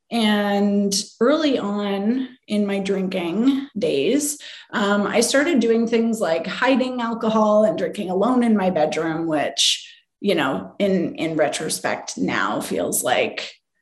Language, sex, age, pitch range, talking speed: English, female, 20-39, 200-255 Hz, 130 wpm